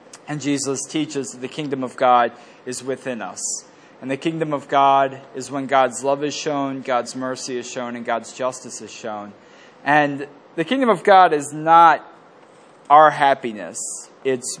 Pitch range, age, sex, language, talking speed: 130-160 Hz, 20-39, male, English, 170 wpm